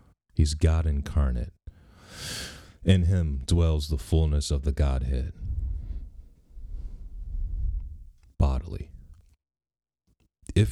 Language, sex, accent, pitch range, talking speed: English, male, American, 70-85 Hz, 75 wpm